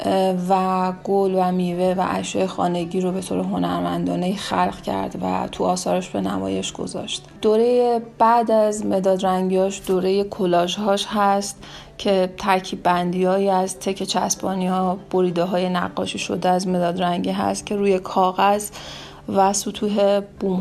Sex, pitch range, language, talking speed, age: female, 180-200 Hz, Persian, 140 wpm, 30-49